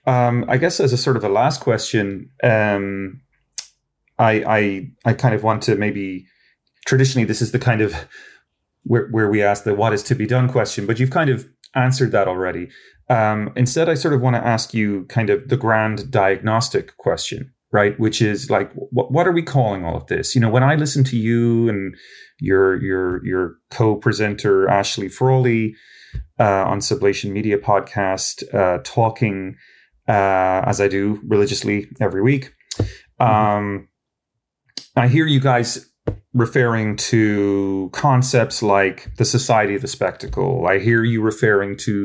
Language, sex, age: English, male, 30-49